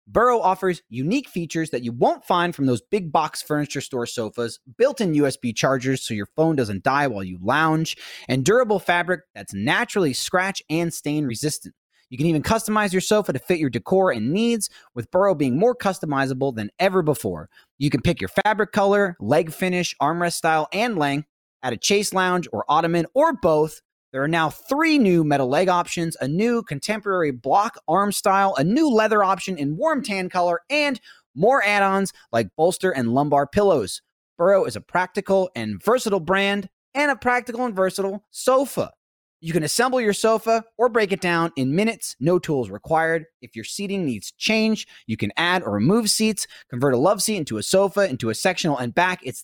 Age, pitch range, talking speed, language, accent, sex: 30-49, 145-205 Hz, 190 wpm, English, American, male